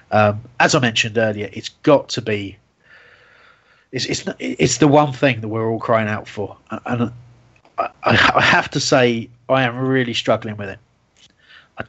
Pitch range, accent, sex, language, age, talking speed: 120-160 Hz, British, male, English, 30-49, 170 wpm